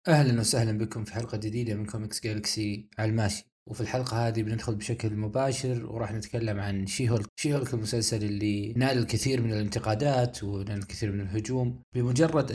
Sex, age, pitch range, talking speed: male, 20-39, 105-130 Hz, 160 wpm